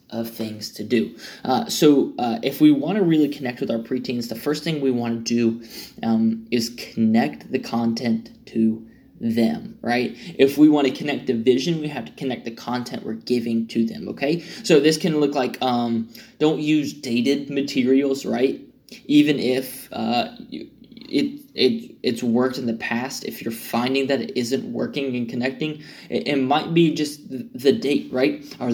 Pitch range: 120-150 Hz